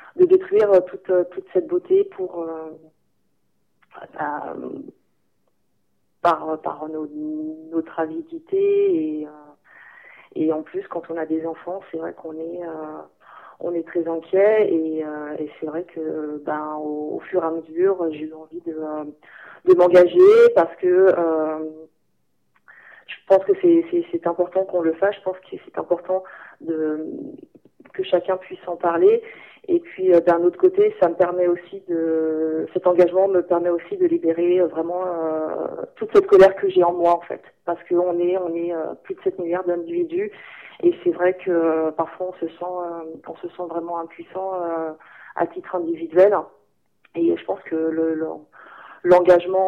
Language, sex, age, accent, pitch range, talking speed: French, female, 30-49, French, 165-200 Hz, 175 wpm